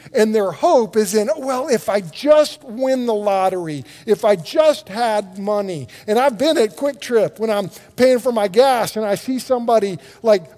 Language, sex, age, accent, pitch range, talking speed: English, male, 50-69, American, 150-220 Hz, 195 wpm